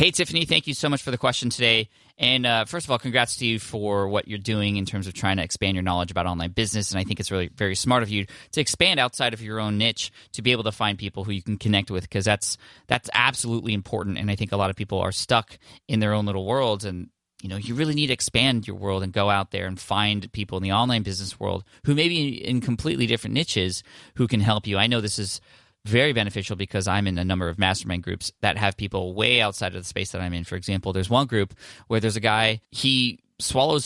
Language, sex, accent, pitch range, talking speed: English, male, American, 95-120 Hz, 260 wpm